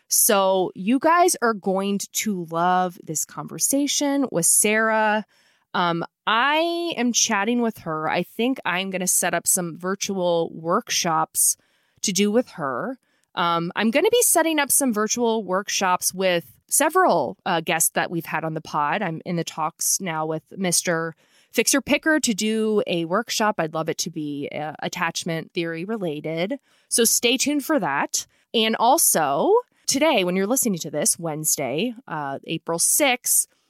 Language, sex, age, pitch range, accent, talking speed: English, female, 20-39, 170-255 Hz, American, 160 wpm